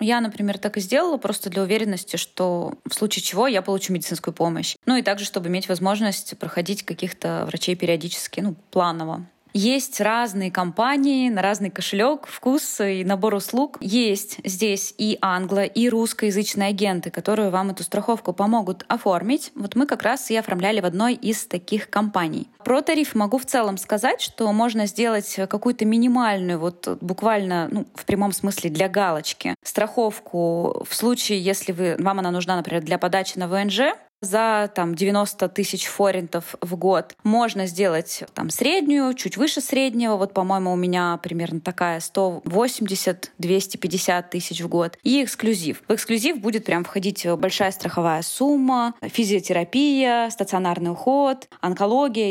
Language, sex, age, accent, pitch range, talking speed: Russian, female, 20-39, native, 185-235 Hz, 150 wpm